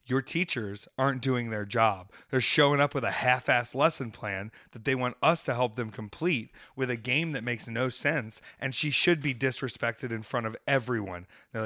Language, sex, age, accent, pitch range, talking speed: English, male, 30-49, American, 115-150 Hz, 200 wpm